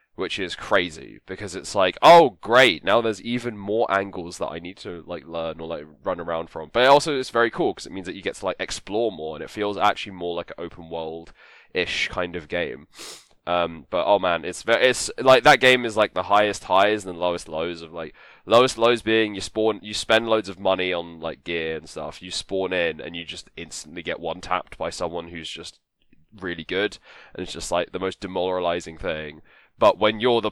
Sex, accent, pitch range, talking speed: male, British, 85-105 Hz, 225 wpm